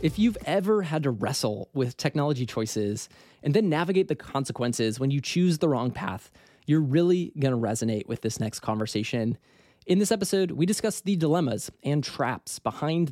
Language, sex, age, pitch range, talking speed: English, male, 20-39, 115-170 Hz, 180 wpm